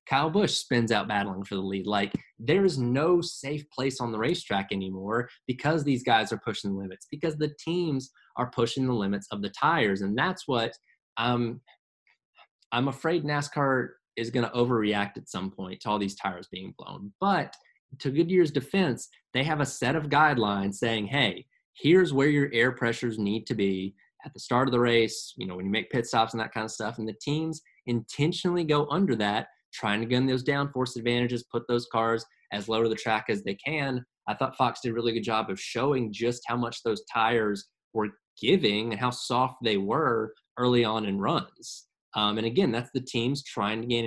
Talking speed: 205 wpm